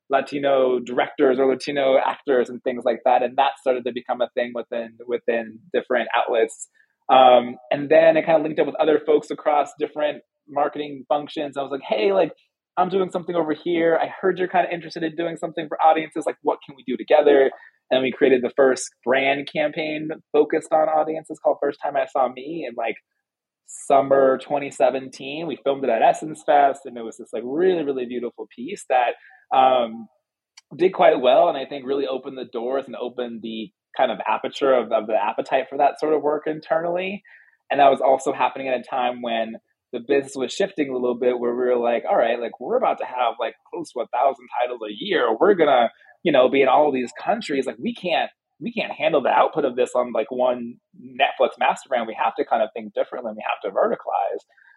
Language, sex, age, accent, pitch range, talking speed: English, male, 20-39, American, 125-160 Hz, 215 wpm